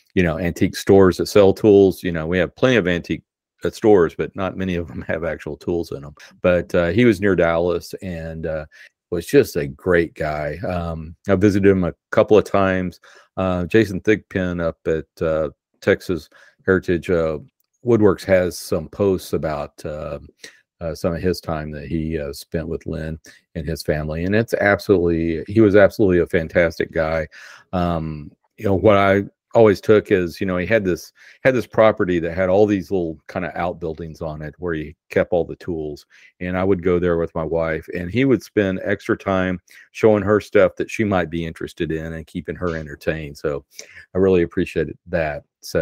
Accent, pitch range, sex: American, 80-95 Hz, male